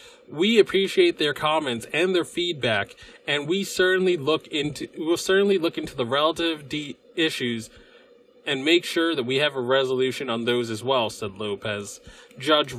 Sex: male